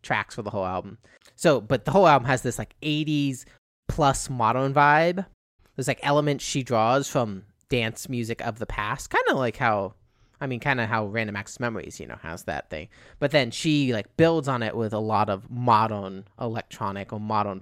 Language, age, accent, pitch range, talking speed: English, 30-49, American, 110-145 Hz, 205 wpm